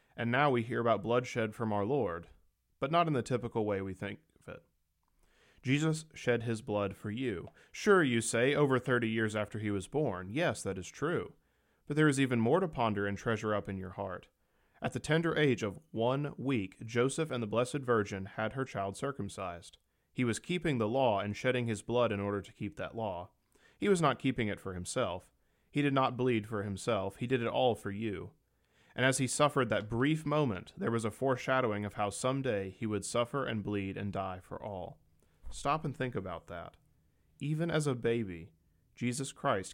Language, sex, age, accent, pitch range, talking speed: English, male, 30-49, American, 100-130 Hz, 205 wpm